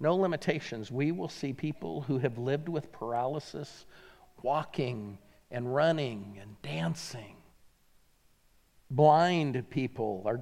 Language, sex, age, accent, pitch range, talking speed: English, male, 50-69, American, 125-170 Hz, 110 wpm